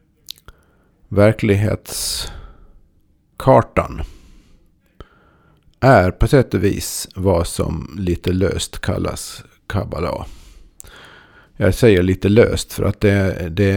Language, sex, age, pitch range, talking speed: Swedish, male, 50-69, 85-100 Hz, 85 wpm